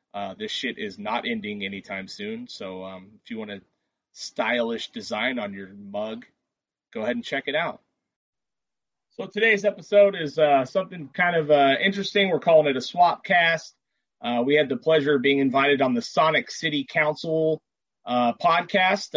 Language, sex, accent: English, male, American